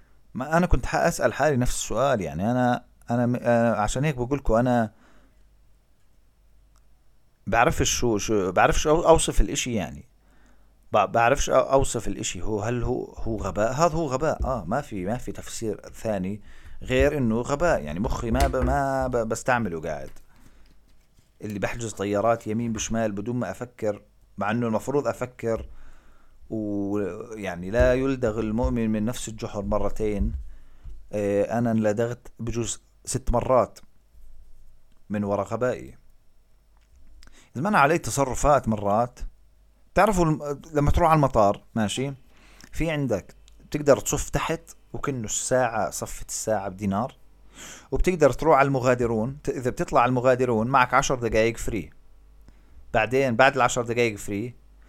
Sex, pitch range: male, 105-130 Hz